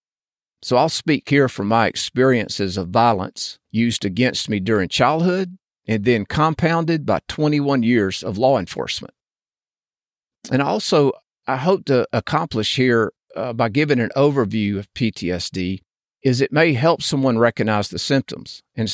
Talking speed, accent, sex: 145 wpm, American, male